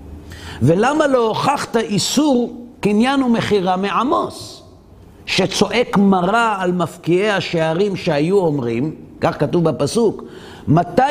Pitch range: 110-170 Hz